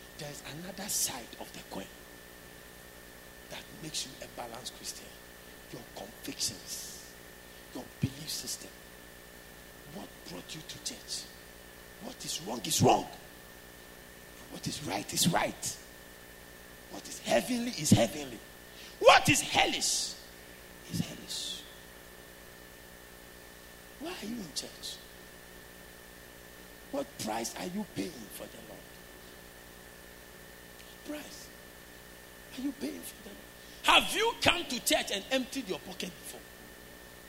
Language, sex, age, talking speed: English, male, 60-79, 115 wpm